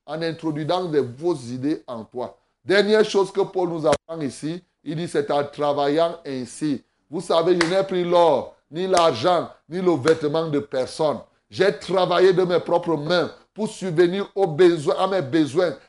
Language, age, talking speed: French, 30-49, 165 wpm